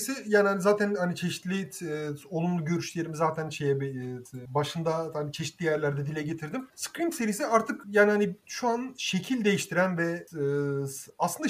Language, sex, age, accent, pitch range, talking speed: Turkish, male, 30-49, native, 150-215 Hz, 145 wpm